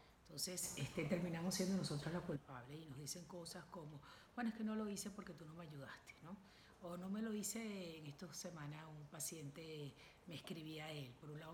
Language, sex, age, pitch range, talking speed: Spanish, female, 50-69, 150-200 Hz, 215 wpm